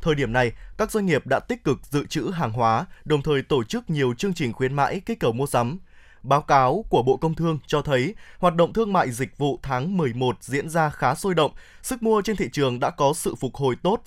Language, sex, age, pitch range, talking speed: Vietnamese, male, 20-39, 135-185 Hz, 245 wpm